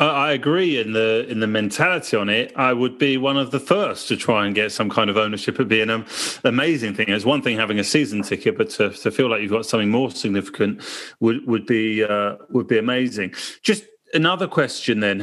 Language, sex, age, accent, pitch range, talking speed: English, male, 30-49, British, 120-175 Hz, 225 wpm